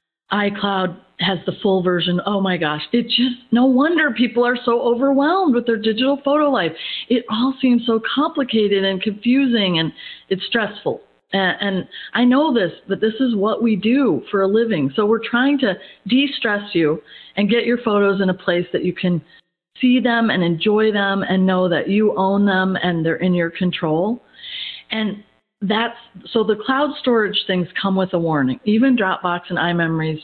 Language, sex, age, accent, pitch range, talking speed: English, female, 40-59, American, 185-240 Hz, 180 wpm